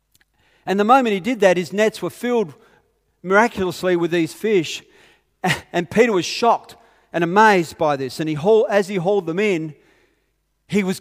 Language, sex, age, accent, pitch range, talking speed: English, male, 40-59, Australian, 160-205 Hz, 175 wpm